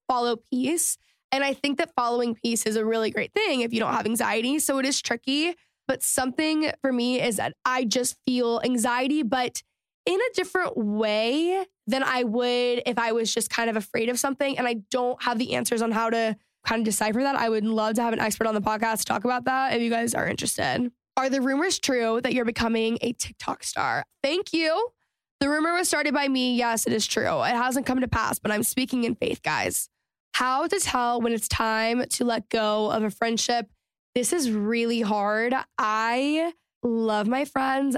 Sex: female